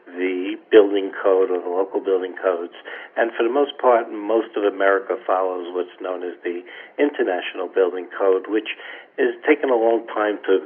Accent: American